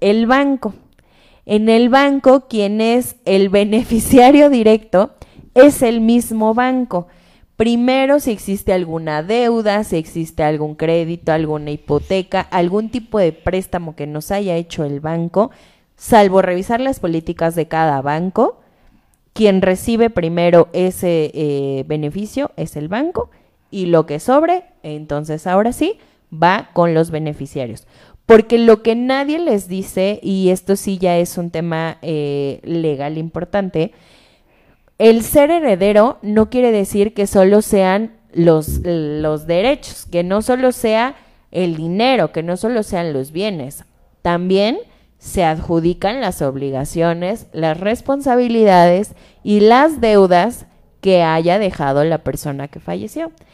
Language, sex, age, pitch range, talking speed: Spanish, female, 20-39, 165-225 Hz, 135 wpm